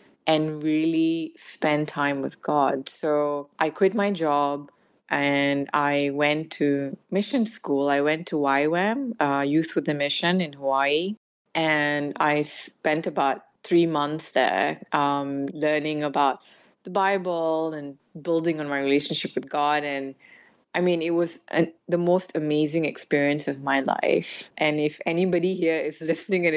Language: English